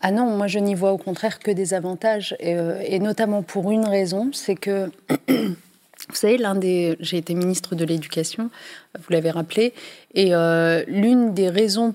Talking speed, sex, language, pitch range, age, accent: 180 wpm, female, French, 170-210 Hz, 30-49, French